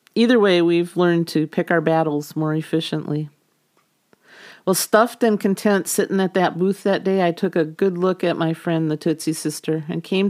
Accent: American